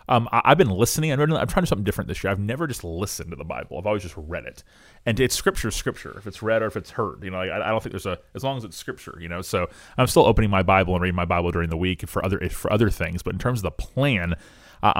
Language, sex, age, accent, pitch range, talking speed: English, male, 30-49, American, 90-110 Hz, 320 wpm